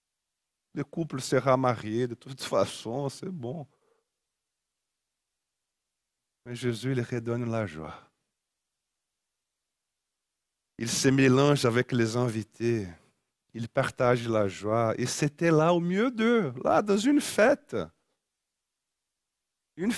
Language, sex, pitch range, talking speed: French, male, 125-155 Hz, 110 wpm